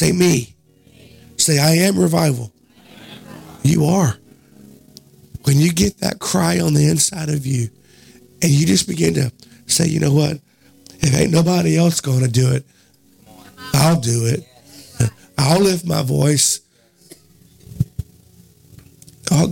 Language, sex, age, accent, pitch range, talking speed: English, male, 50-69, American, 120-150 Hz, 130 wpm